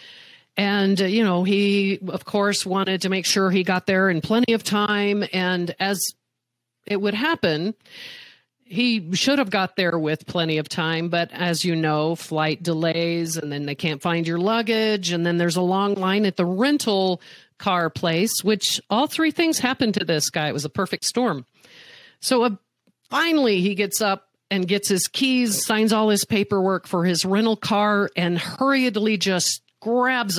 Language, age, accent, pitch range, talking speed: English, 50-69, American, 165-210 Hz, 180 wpm